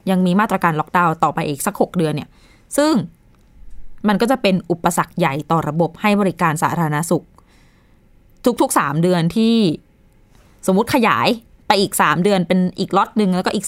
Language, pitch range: Thai, 165-205 Hz